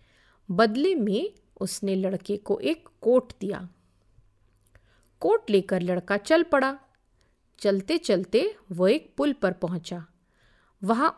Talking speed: 115 wpm